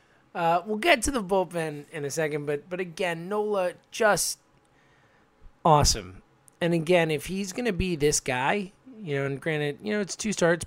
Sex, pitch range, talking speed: male, 115-155 Hz, 180 wpm